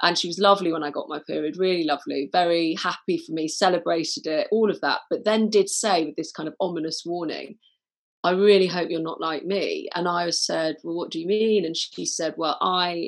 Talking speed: 230 wpm